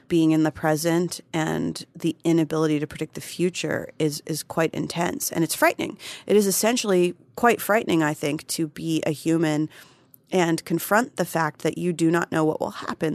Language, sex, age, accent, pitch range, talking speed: English, female, 30-49, American, 155-185 Hz, 185 wpm